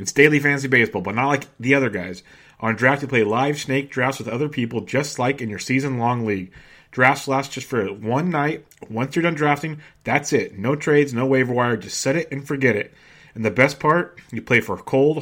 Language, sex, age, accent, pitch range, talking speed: English, male, 30-49, American, 120-145 Hz, 225 wpm